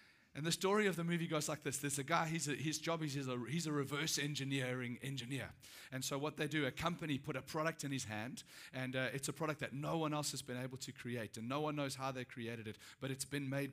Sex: male